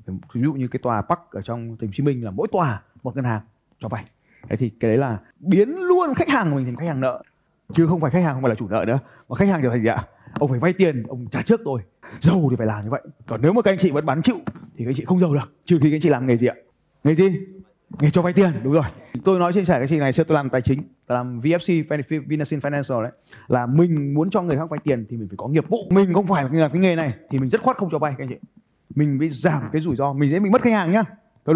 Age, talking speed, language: 20-39, 310 wpm, Vietnamese